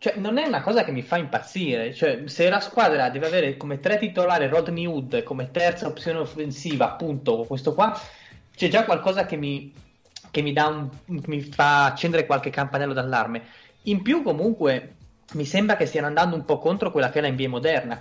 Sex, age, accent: male, 20-39, native